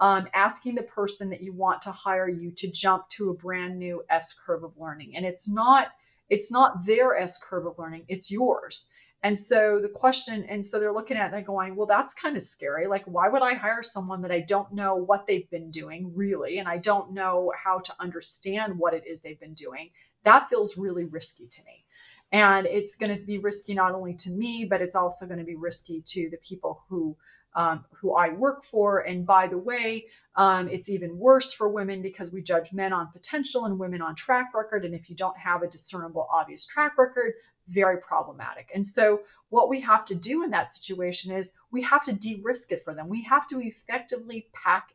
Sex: female